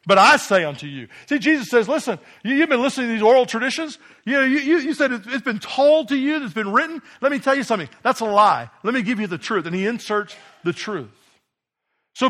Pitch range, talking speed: 195-260 Hz, 250 wpm